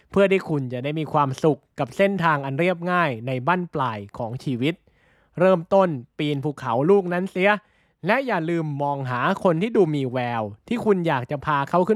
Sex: male